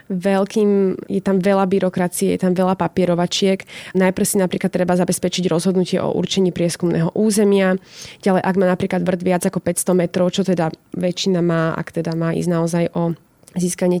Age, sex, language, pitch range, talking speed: 20-39, female, Slovak, 175-195 Hz, 165 wpm